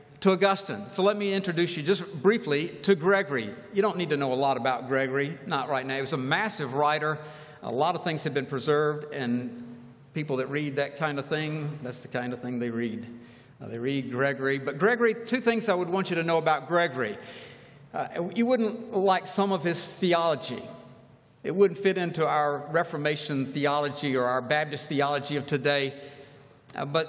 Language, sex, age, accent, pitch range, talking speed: English, male, 60-79, American, 140-190 Hz, 195 wpm